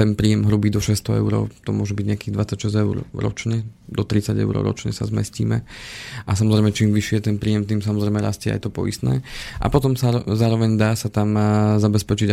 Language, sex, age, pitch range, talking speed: Slovak, male, 20-39, 105-110 Hz, 190 wpm